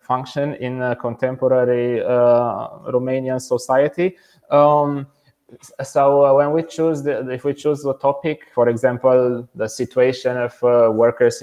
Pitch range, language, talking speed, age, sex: 120-135 Hz, English, 135 wpm, 20-39, male